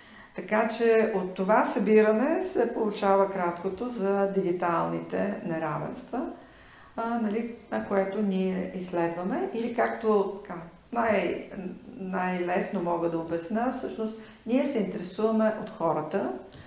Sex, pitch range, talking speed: female, 180-225 Hz, 110 wpm